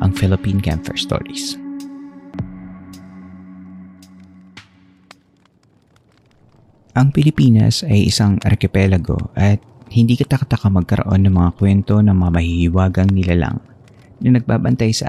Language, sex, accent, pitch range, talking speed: Filipino, male, native, 90-110 Hz, 90 wpm